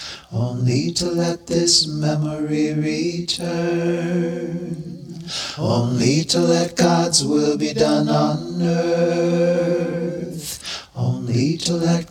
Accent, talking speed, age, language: American, 90 wpm, 30-49, English